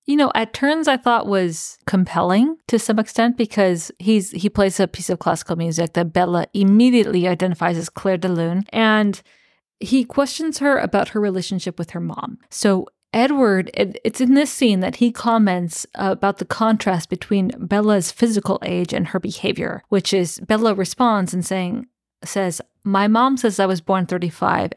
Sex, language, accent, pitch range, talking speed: female, English, American, 180-230 Hz, 165 wpm